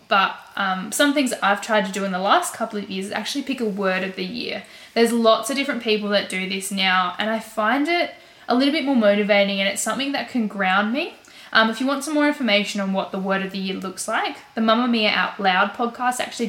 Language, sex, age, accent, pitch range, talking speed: English, female, 10-29, Australian, 195-245 Hz, 255 wpm